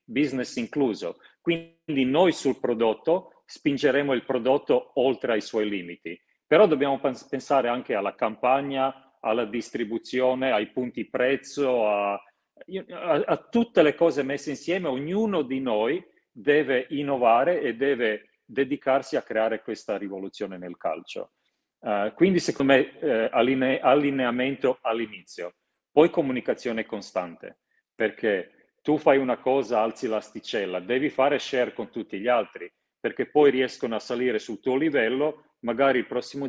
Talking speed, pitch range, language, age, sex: 130 wpm, 110-140 Hz, Italian, 40-59, male